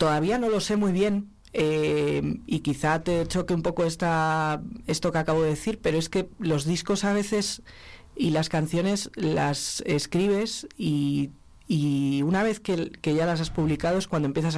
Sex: female